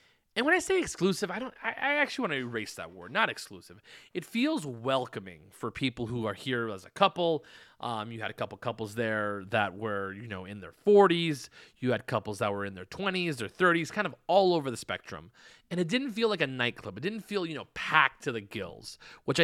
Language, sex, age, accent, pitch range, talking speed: English, male, 30-49, American, 110-175 Hz, 230 wpm